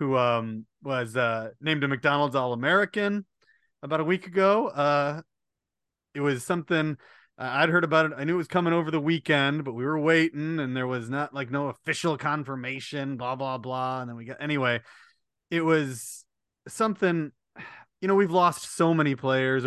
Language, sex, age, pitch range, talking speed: English, male, 30-49, 120-155 Hz, 180 wpm